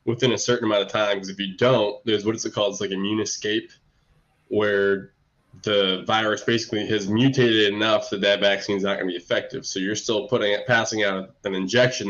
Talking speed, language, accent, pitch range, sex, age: 220 wpm, English, American, 105-130 Hz, male, 20-39